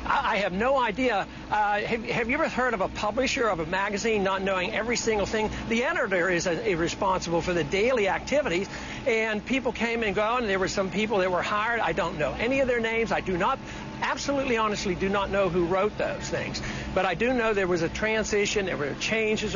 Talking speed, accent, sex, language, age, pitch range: 225 wpm, American, male, English, 60-79, 205-255 Hz